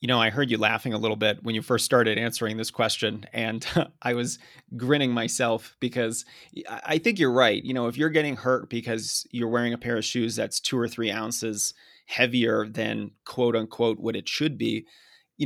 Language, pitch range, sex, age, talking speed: English, 110-130 Hz, male, 30-49, 205 wpm